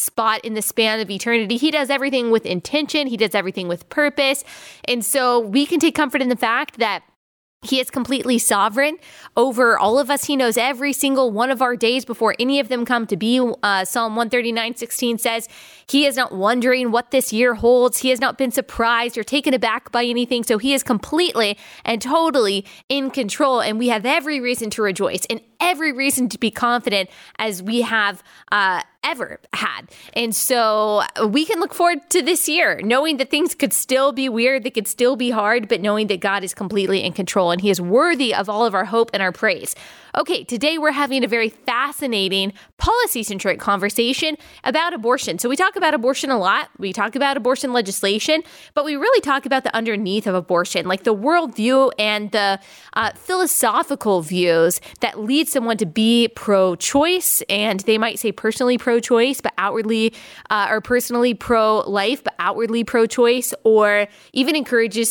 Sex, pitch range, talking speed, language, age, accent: female, 215-270 Hz, 190 wpm, English, 20-39, American